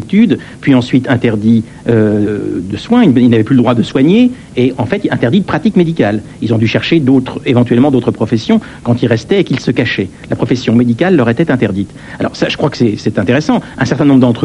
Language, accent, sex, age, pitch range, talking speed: French, French, male, 60-79, 115-150 Hz, 220 wpm